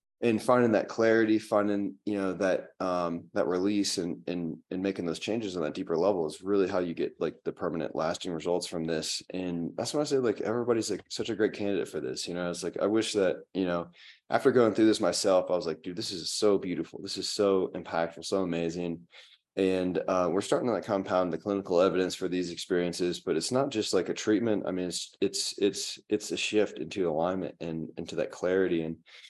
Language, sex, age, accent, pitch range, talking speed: English, male, 20-39, American, 85-100 Hz, 225 wpm